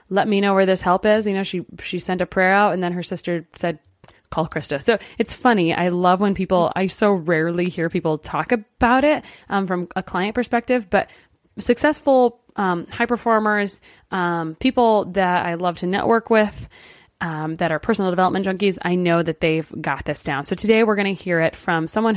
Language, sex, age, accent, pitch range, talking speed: English, female, 20-39, American, 170-210 Hz, 210 wpm